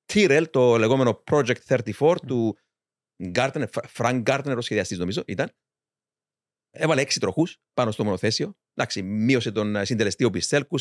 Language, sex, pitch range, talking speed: Greek, male, 115-145 Hz, 135 wpm